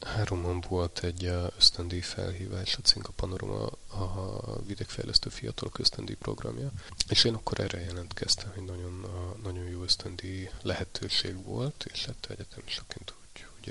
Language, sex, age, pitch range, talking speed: Hungarian, male, 30-49, 90-110 Hz, 145 wpm